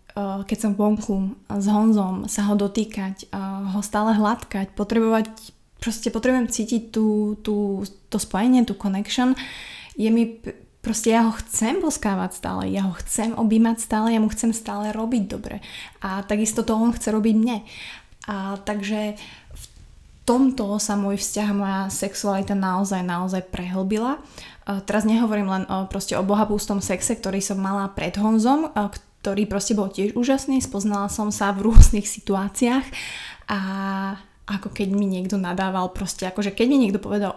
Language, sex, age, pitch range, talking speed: Slovak, female, 20-39, 195-225 Hz, 150 wpm